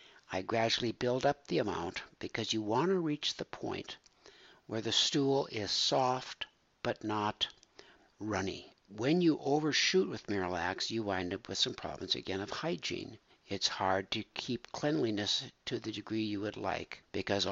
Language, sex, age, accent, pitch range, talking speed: English, male, 60-79, American, 105-135 Hz, 160 wpm